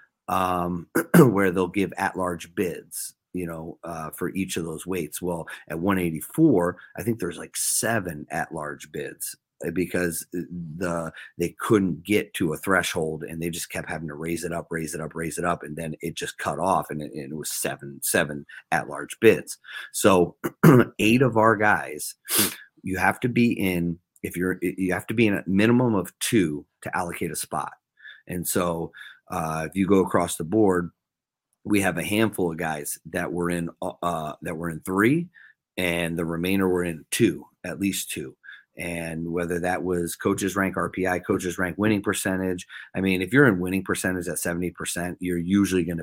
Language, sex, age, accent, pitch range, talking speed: English, male, 30-49, American, 85-95 Hz, 190 wpm